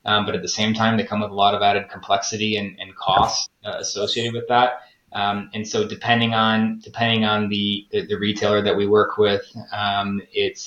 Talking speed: 215 wpm